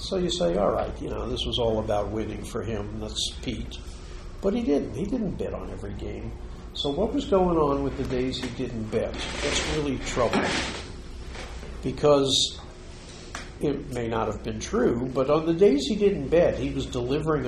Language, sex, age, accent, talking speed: English, male, 50-69, American, 190 wpm